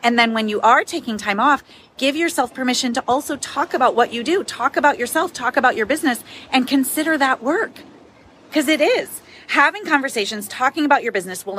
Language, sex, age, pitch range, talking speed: English, female, 30-49, 215-280 Hz, 200 wpm